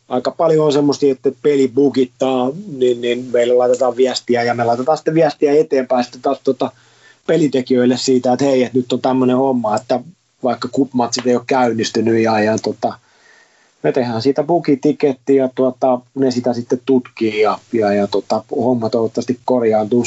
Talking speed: 165 wpm